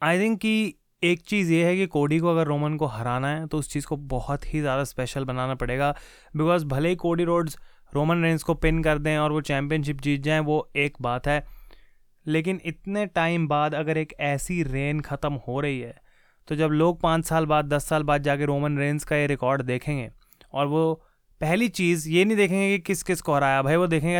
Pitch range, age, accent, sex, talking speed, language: 145-170 Hz, 20-39, native, male, 215 wpm, Hindi